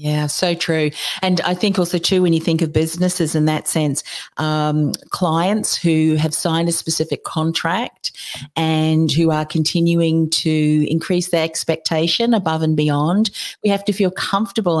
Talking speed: 160 wpm